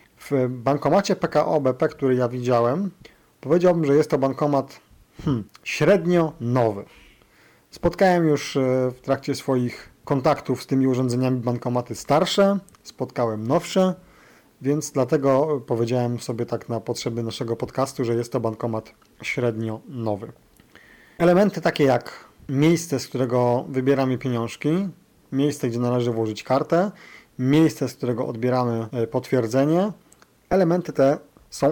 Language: Polish